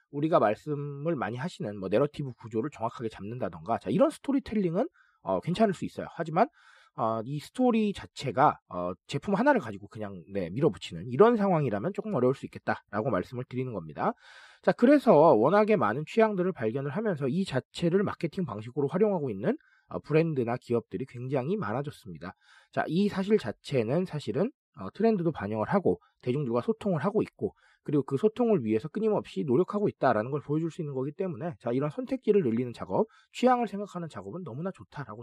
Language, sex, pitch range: Korean, male, 125-205 Hz